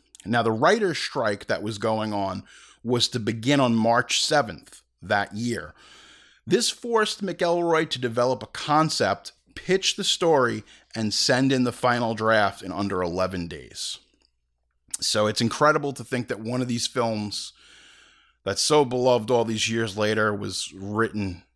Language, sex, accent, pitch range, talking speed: English, male, American, 105-135 Hz, 155 wpm